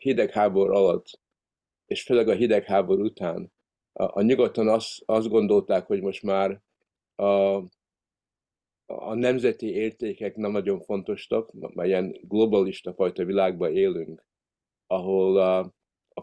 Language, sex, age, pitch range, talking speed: Hungarian, male, 50-69, 95-110 Hz, 120 wpm